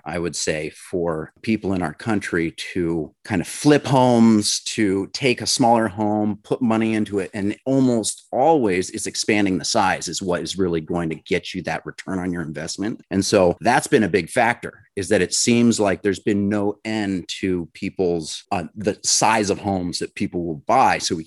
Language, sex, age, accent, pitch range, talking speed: English, male, 30-49, American, 85-110 Hz, 200 wpm